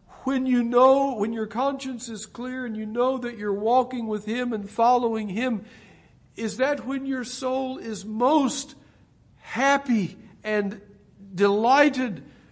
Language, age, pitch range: English, 60-79, 135-210 Hz